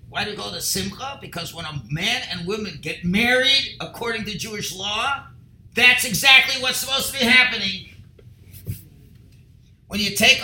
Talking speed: 165 wpm